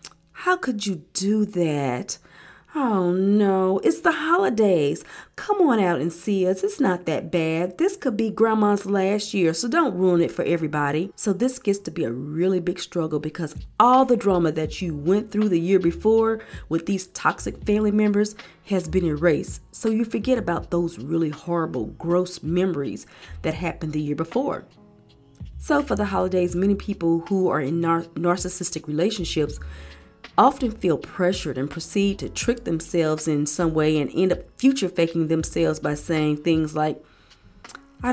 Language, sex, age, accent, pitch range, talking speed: English, female, 40-59, American, 150-195 Hz, 170 wpm